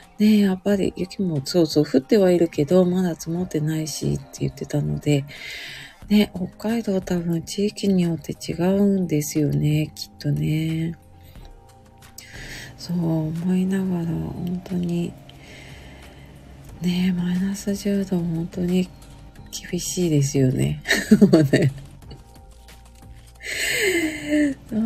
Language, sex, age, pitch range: Japanese, female, 40-59, 145-195 Hz